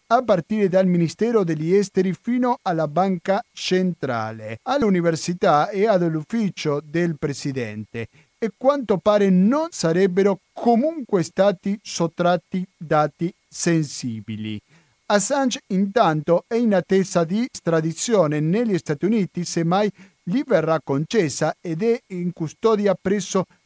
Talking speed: 110 wpm